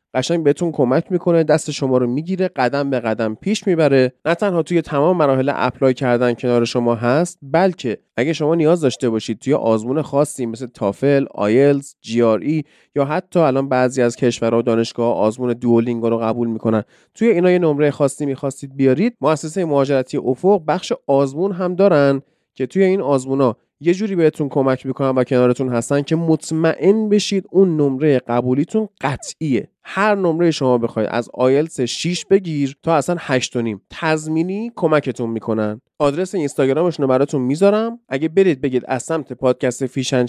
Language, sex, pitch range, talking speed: Persian, male, 125-165 Hz, 165 wpm